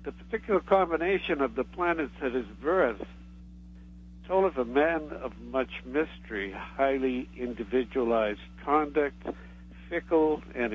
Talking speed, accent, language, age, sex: 115 wpm, American, English, 60-79, male